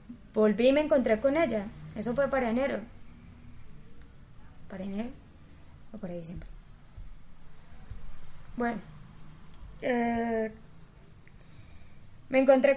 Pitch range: 215-260 Hz